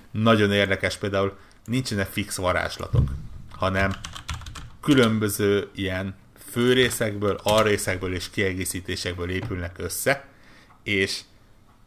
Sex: male